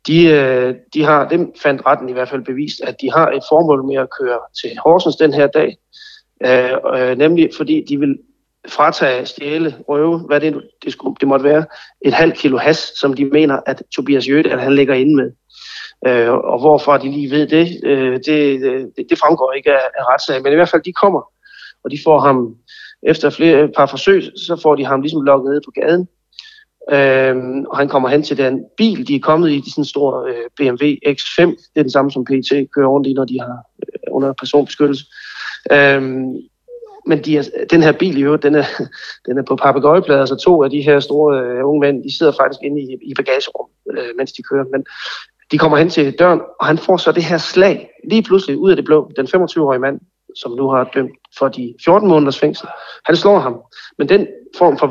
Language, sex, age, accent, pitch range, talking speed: Danish, male, 30-49, native, 135-165 Hz, 210 wpm